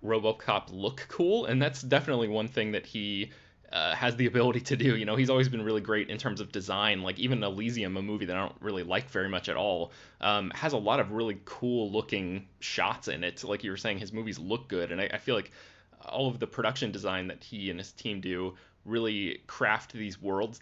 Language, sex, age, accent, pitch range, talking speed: English, male, 20-39, American, 105-130 Hz, 230 wpm